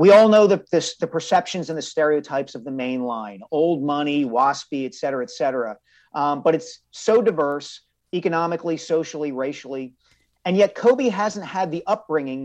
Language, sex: English, male